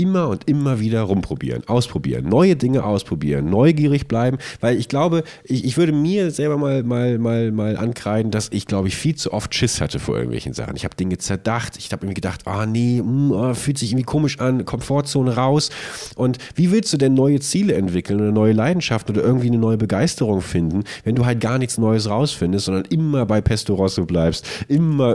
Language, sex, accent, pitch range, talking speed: German, male, German, 100-135 Hz, 210 wpm